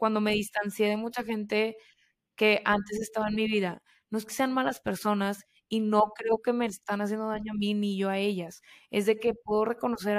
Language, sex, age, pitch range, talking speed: Spanish, female, 20-39, 205-230 Hz, 220 wpm